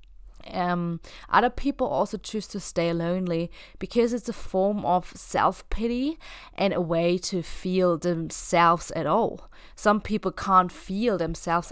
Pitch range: 165-215 Hz